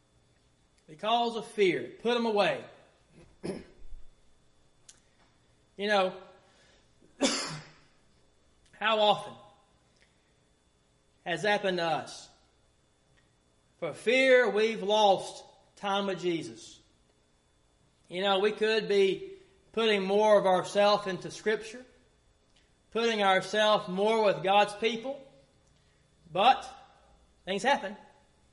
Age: 30-49